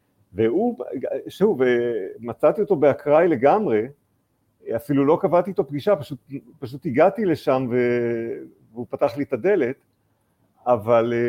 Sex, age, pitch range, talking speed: male, 50-69, 115-150 Hz, 115 wpm